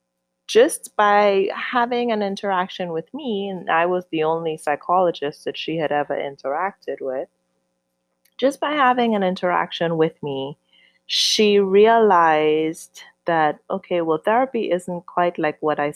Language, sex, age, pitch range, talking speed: English, female, 20-39, 145-200 Hz, 140 wpm